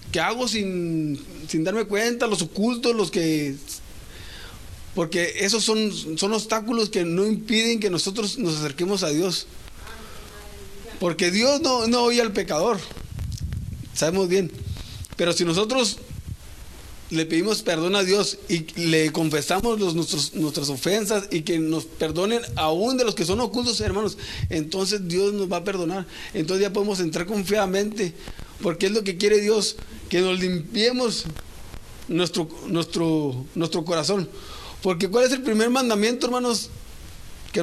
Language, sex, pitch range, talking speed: Spanish, male, 150-215 Hz, 145 wpm